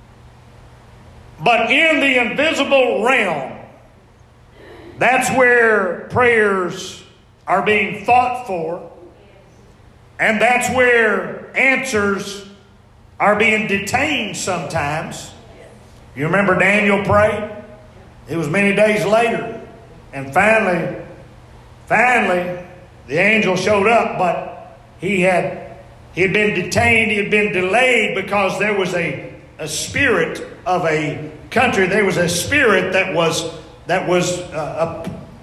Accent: American